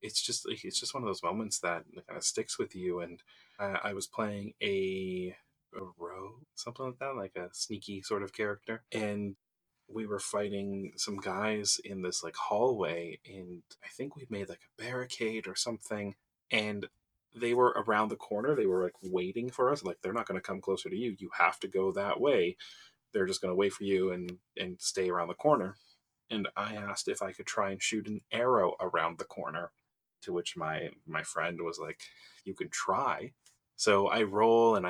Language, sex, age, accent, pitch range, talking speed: English, male, 30-49, American, 95-120 Hz, 205 wpm